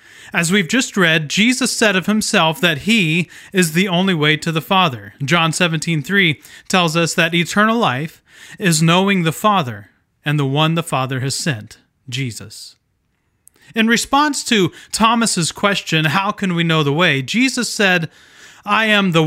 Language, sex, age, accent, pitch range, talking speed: English, male, 30-49, American, 150-205 Hz, 160 wpm